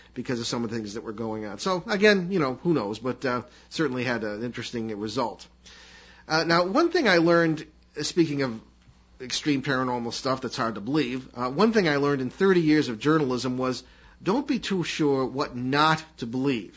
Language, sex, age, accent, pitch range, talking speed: English, male, 40-59, American, 115-155 Hz, 210 wpm